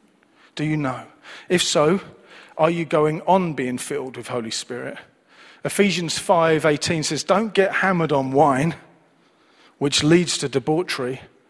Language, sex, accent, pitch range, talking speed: English, male, British, 130-170 Hz, 135 wpm